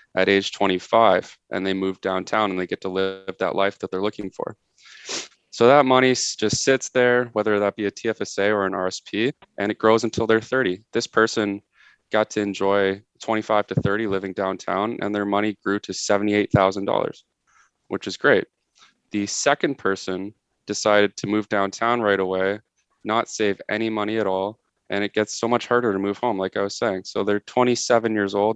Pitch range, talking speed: 95-110 Hz, 190 wpm